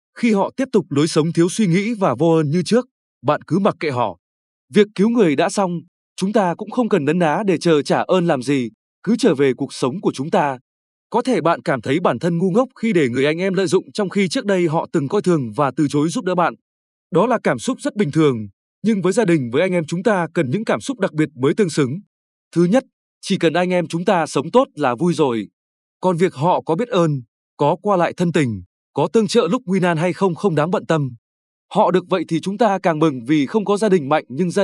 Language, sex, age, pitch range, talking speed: Vietnamese, male, 20-39, 150-205 Hz, 265 wpm